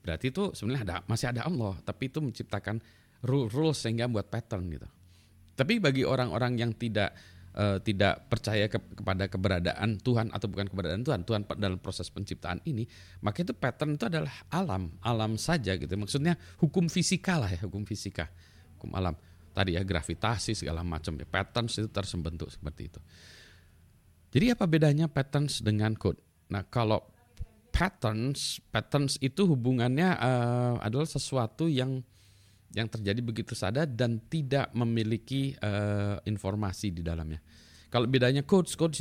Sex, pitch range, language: male, 90-125 Hz, Indonesian